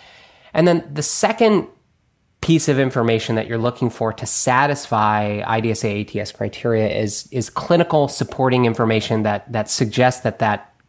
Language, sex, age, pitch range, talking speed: English, male, 20-39, 110-140 Hz, 140 wpm